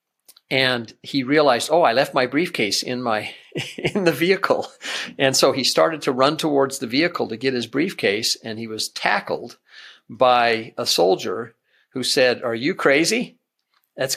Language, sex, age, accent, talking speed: English, male, 50-69, American, 165 wpm